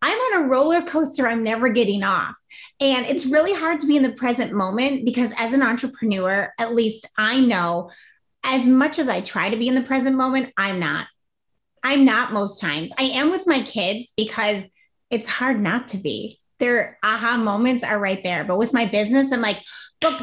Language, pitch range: English, 210-300 Hz